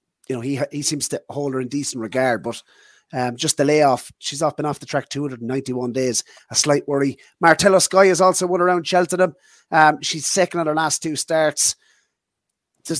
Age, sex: 30-49, male